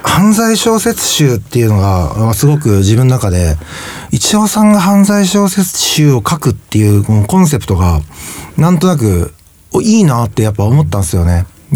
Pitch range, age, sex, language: 100-160 Hz, 40-59, male, Japanese